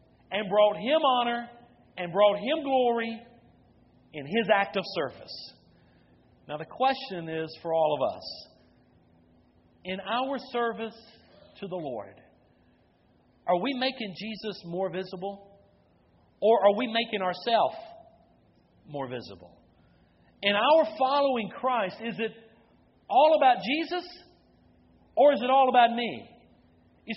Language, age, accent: English, 50-69, American